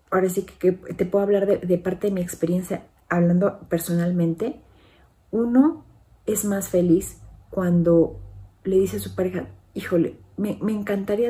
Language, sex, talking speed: Spanish, female, 150 wpm